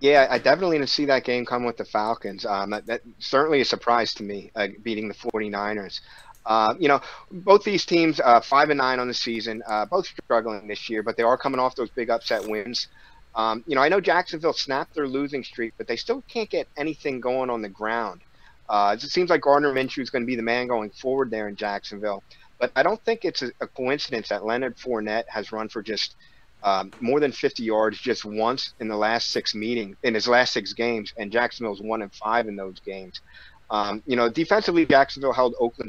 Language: English